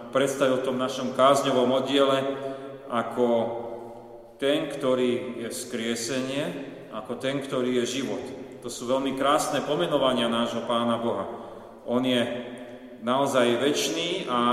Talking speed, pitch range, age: 120 wpm, 125-140 Hz, 40-59